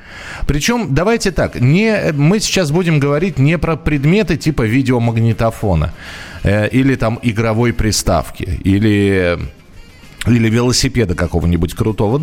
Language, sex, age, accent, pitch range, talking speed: Russian, male, 20-39, native, 100-145 Hz, 110 wpm